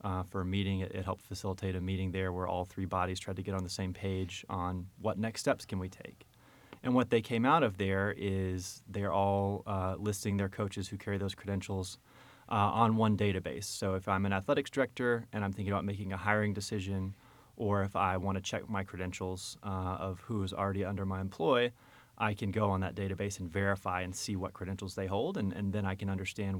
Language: English